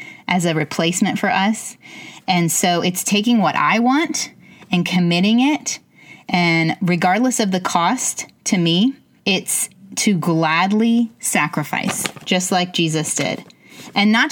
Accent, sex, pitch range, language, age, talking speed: American, female, 175-225 Hz, English, 30-49, 135 wpm